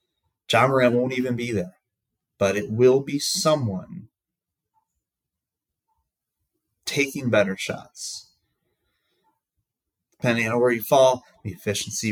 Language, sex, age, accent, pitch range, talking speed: English, male, 30-49, American, 105-130 Hz, 105 wpm